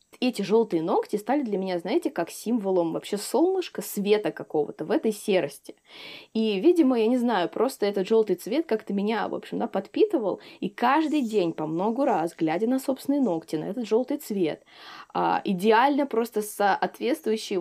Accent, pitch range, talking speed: native, 185-250 Hz, 165 wpm